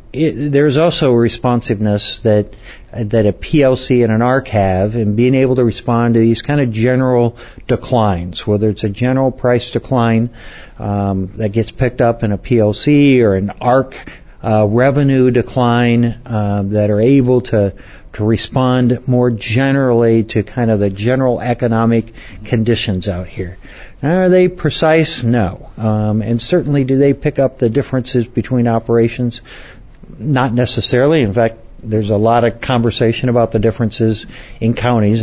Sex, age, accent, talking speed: male, 50-69, American, 160 wpm